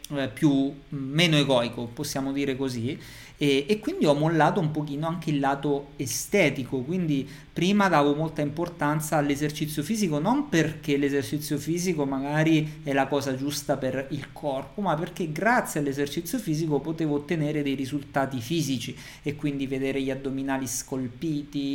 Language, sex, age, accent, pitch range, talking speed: Italian, male, 50-69, native, 135-165 Hz, 145 wpm